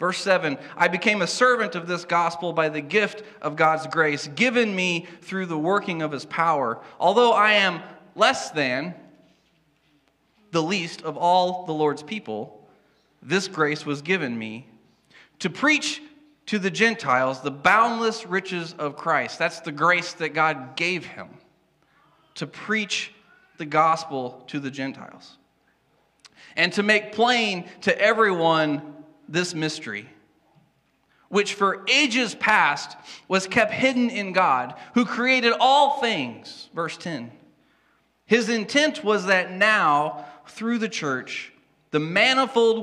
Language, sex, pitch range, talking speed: English, male, 155-215 Hz, 135 wpm